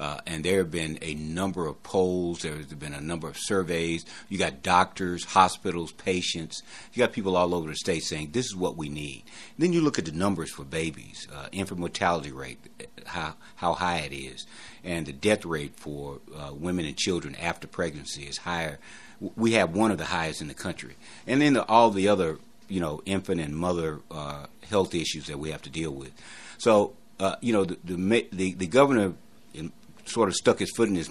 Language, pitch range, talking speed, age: English, 80-100 Hz, 210 wpm, 60-79